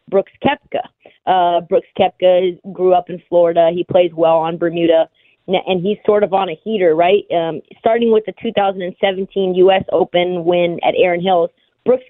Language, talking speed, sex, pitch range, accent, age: English, 170 wpm, female, 175-205 Hz, American, 30-49